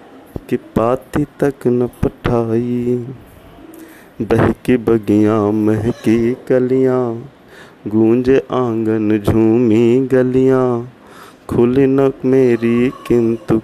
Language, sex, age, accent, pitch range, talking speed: Hindi, male, 30-49, native, 115-130 Hz, 75 wpm